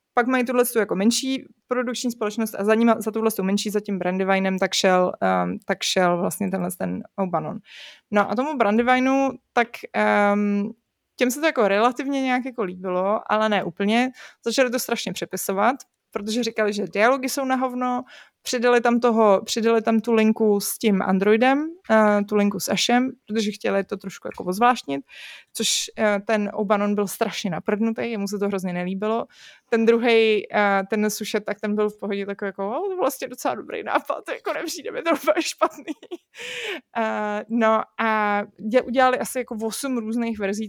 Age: 20-39